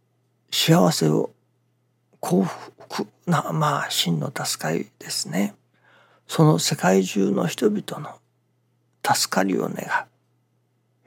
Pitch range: 120-165 Hz